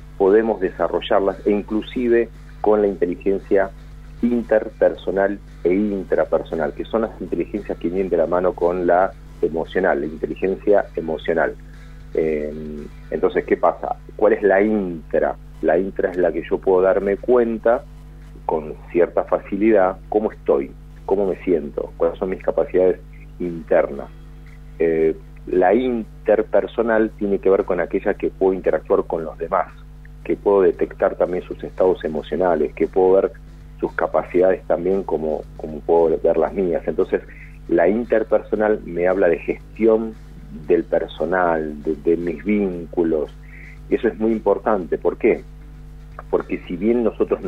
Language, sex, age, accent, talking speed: Spanish, male, 40-59, Argentinian, 140 wpm